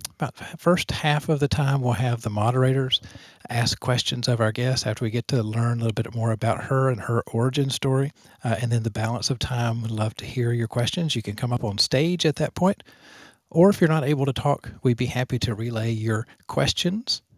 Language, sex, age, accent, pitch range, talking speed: English, male, 50-69, American, 115-135 Hz, 230 wpm